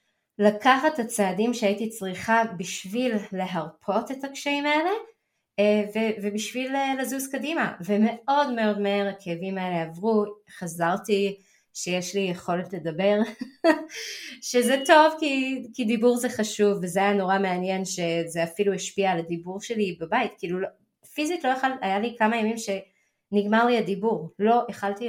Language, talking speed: Hebrew, 135 wpm